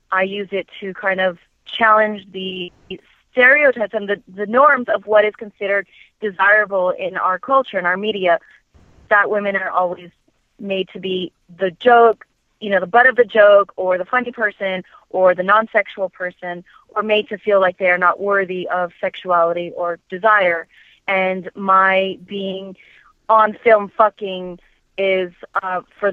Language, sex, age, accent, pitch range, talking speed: English, female, 30-49, American, 185-215 Hz, 160 wpm